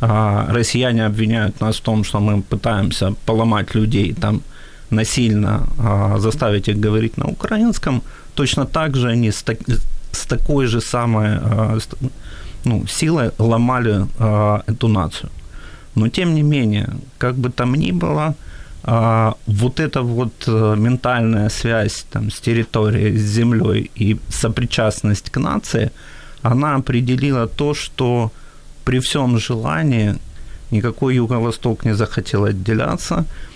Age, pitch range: 30-49, 105-125 Hz